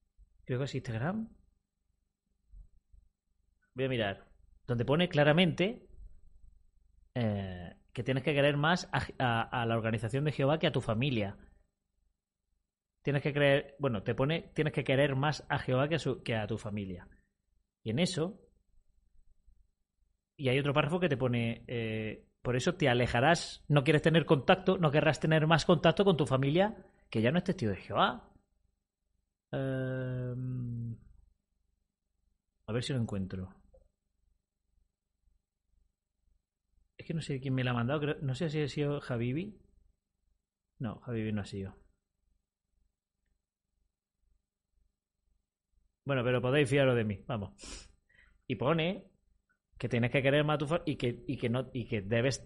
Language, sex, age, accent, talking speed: Spanish, male, 30-49, Spanish, 145 wpm